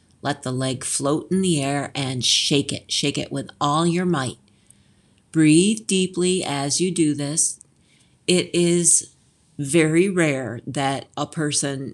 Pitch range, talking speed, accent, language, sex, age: 135-165 Hz, 145 wpm, American, English, female, 40-59